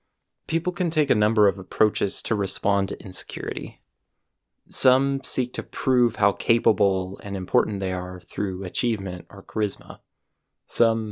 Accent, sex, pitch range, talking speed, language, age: American, male, 95-115 Hz, 140 wpm, English, 20-39